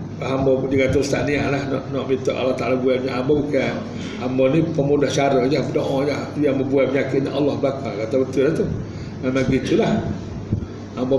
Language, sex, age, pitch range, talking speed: Malay, male, 50-69, 120-145 Hz, 175 wpm